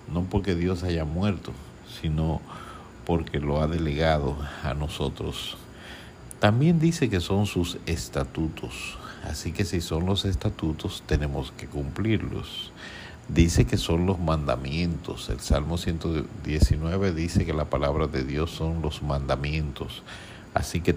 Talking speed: 130 wpm